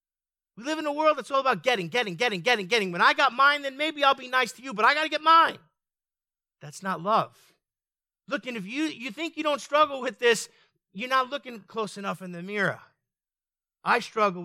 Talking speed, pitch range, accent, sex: 225 wpm, 175-235 Hz, American, male